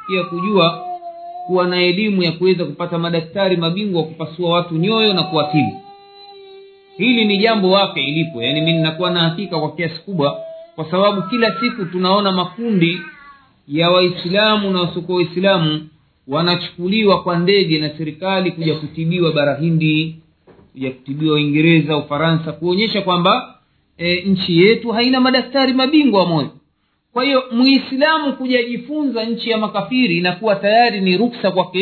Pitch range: 165-250 Hz